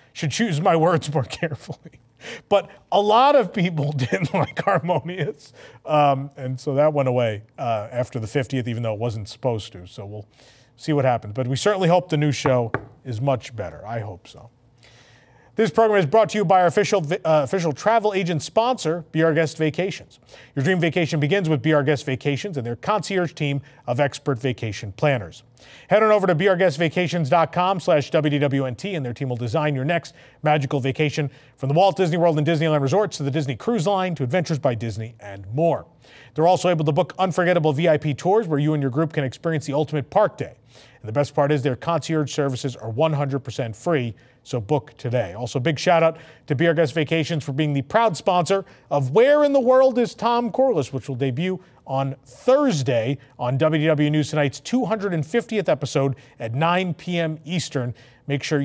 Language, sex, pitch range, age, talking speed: English, male, 130-170 Hz, 40-59, 190 wpm